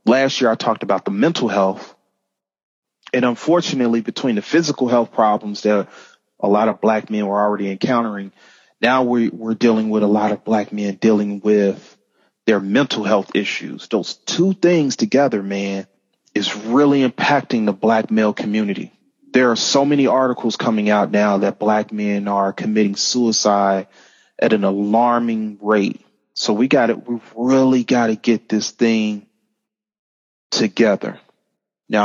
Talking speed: 155 wpm